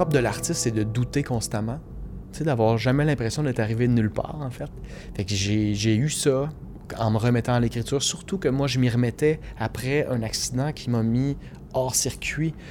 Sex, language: male, French